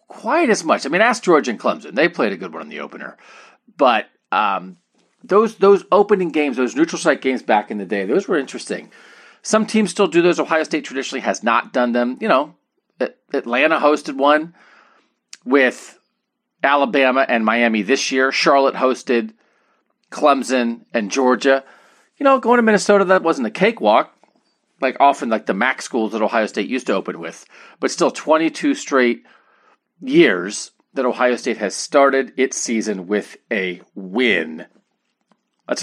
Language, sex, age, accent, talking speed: English, male, 40-59, American, 170 wpm